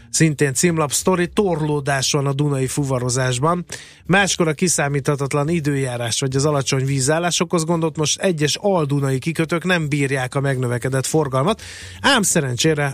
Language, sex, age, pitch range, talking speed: Hungarian, male, 30-49, 130-160 Hz, 135 wpm